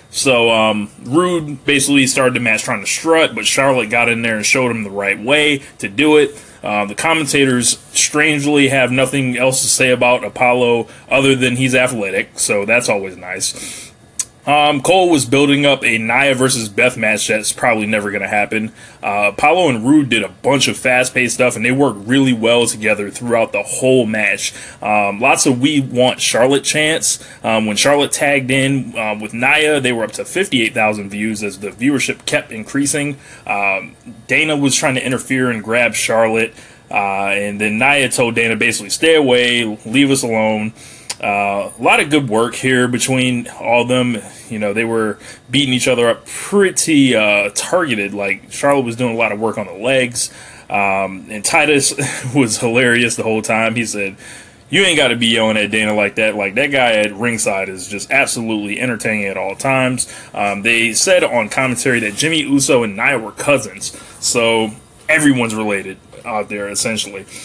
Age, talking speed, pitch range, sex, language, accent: 20-39, 185 wpm, 110-135 Hz, male, English, American